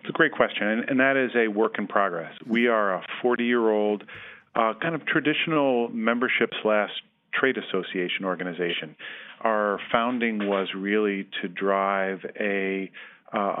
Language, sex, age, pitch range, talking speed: English, male, 40-59, 95-115 Hz, 145 wpm